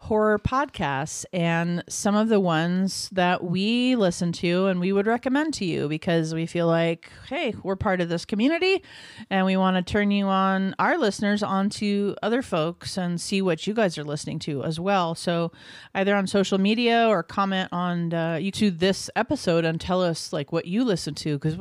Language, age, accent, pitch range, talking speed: English, 30-49, American, 165-205 Hz, 195 wpm